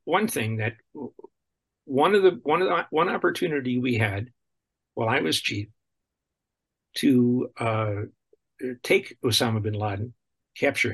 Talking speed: 130 wpm